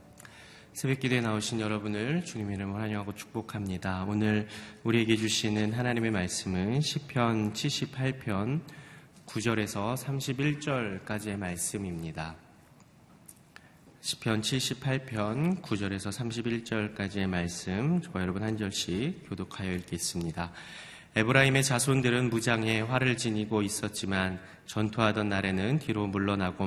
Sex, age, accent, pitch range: male, 30-49, native, 95-120 Hz